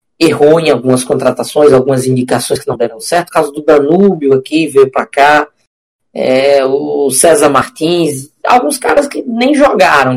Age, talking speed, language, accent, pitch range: 20-39, 160 wpm, Portuguese, Brazilian, 130-215 Hz